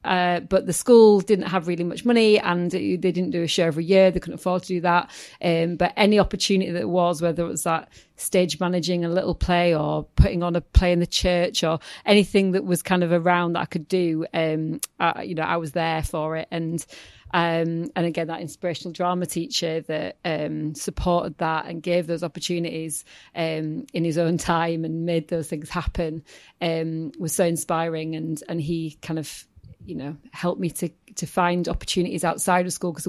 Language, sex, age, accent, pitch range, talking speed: English, female, 40-59, British, 165-180 Hz, 210 wpm